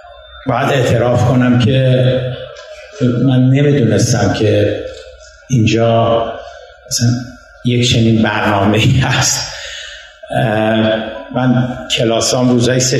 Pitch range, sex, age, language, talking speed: 115-130 Hz, male, 60-79, Persian, 85 wpm